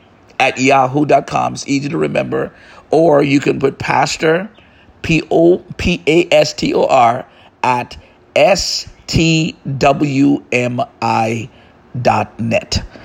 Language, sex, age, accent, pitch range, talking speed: English, male, 50-69, American, 120-155 Hz, 90 wpm